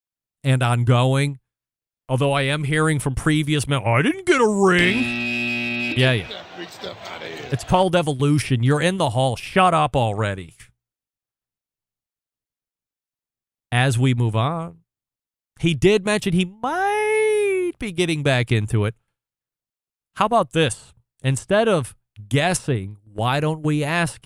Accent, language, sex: American, English, male